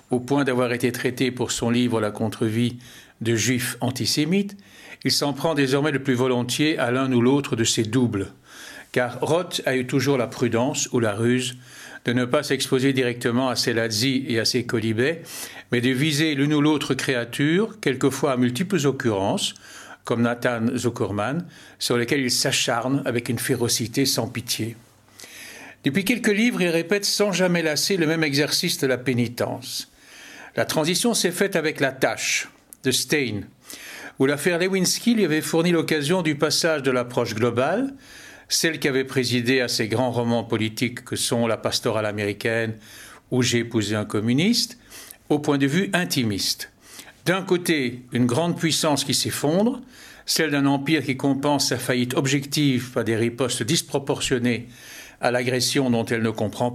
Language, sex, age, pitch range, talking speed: French, male, 60-79, 120-155 Hz, 165 wpm